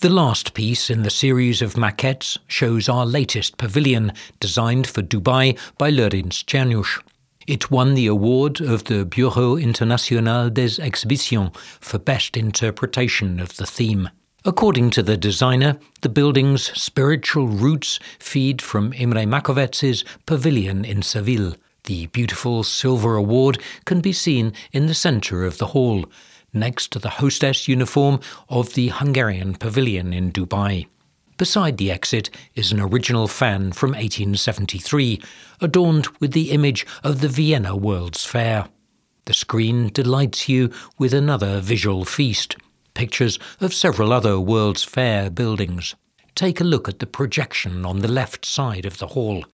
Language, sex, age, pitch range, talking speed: English, male, 60-79, 105-135 Hz, 145 wpm